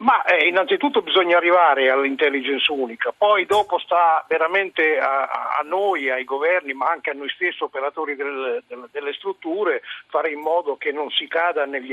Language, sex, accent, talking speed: Italian, male, native, 170 wpm